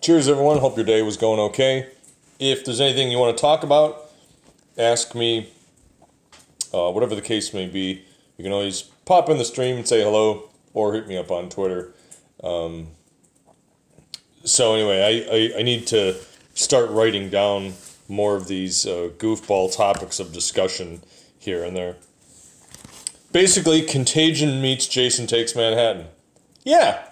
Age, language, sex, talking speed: 30-49, English, male, 155 wpm